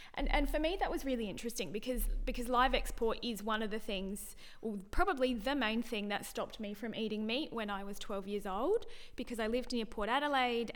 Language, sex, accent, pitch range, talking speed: English, female, Australian, 210-255 Hz, 225 wpm